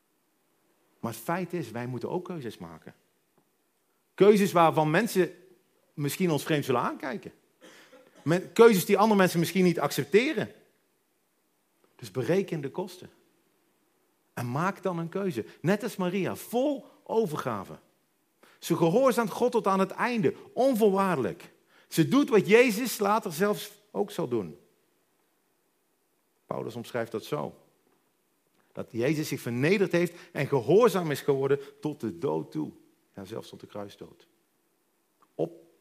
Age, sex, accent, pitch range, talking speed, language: 50-69, male, Dutch, 130-195 Hz, 130 wpm, Dutch